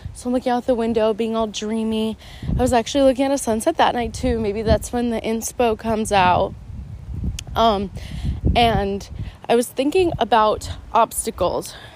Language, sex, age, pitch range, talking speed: English, female, 20-39, 195-235 Hz, 165 wpm